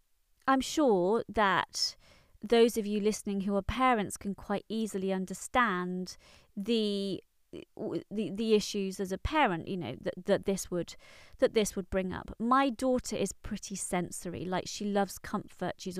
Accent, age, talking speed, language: British, 30-49, 160 wpm, English